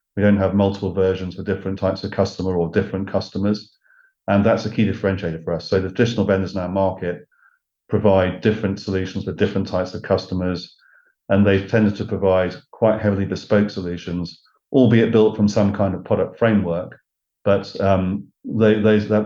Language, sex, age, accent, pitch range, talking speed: English, male, 40-59, British, 90-105 Hz, 170 wpm